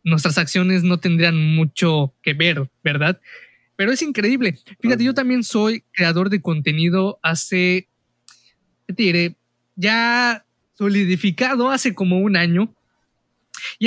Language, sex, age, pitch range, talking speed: Spanish, male, 20-39, 160-205 Hz, 115 wpm